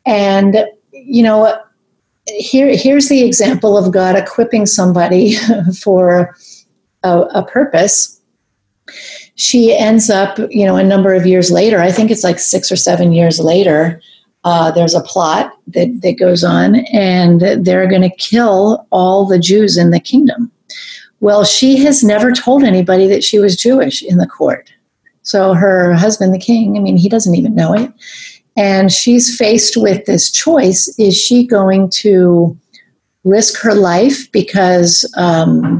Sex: female